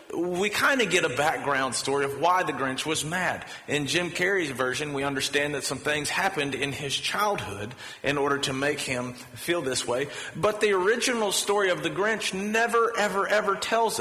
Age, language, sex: 40-59, English, male